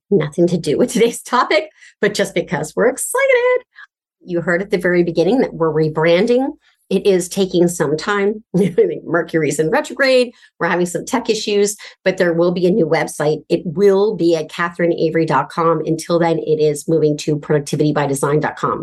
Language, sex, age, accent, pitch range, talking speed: English, female, 40-59, American, 160-205 Hz, 165 wpm